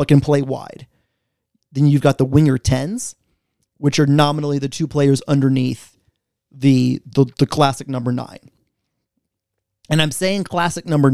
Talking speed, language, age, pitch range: 145 wpm, English, 30-49, 130-165 Hz